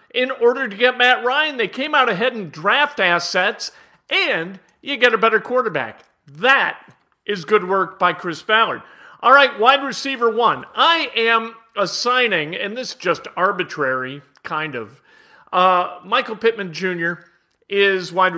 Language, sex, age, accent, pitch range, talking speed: English, male, 40-59, American, 180-245 Hz, 155 wpm